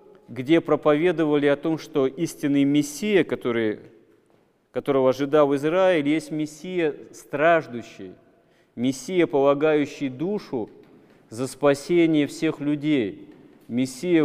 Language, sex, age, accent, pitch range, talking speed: Russian, male, 40-59, native, 135-160 Hz, 90 wpm